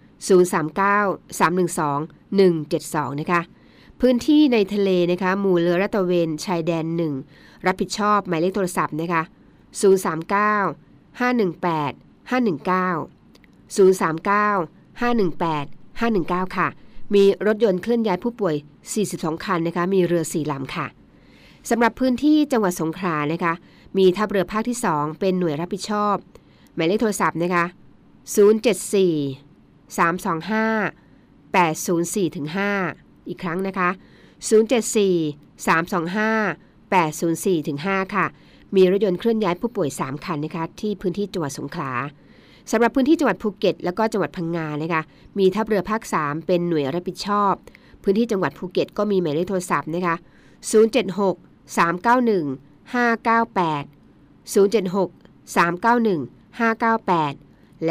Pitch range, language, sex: 165-210 Hz, Thai, female